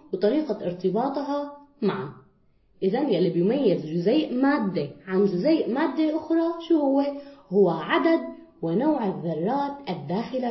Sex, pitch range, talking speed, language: female, 200-320 Hz, 110 wpm, Arabic